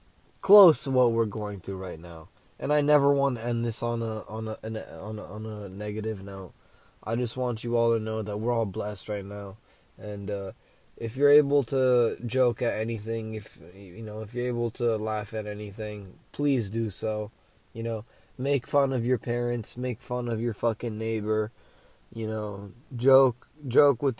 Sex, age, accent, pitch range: male, 20-39, American, 110-130 Hz